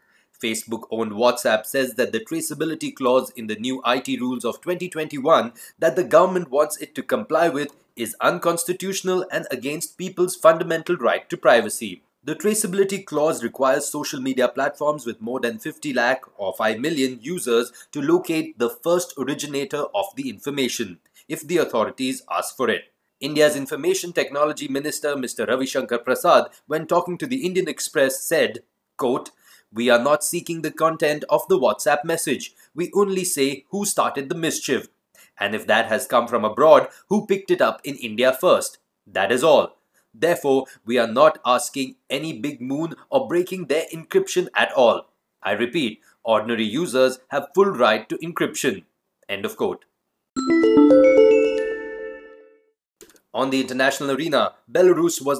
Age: 30-49